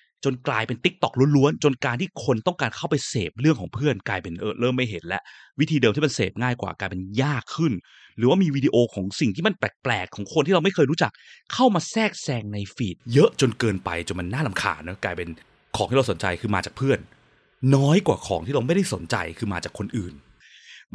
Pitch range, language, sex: 100-150 Hz, Thai, male